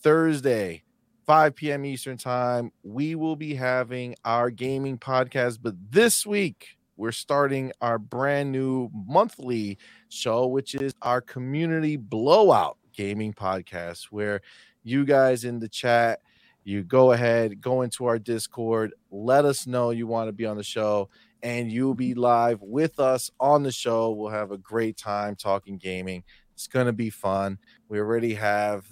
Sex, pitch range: male, 100-125 Hz